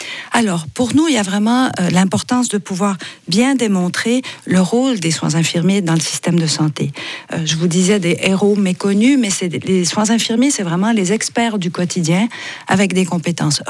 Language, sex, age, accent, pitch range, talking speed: French, female, 50-69, French, 175-230 Hz, 195 wpm